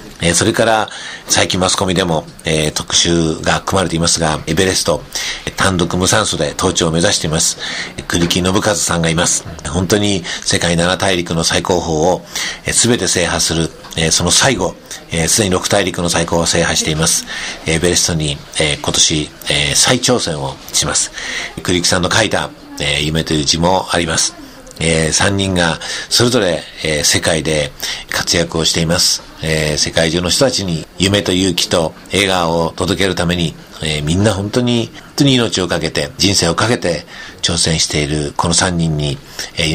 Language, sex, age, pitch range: Japanese, male, 50-69, 80-95 Hz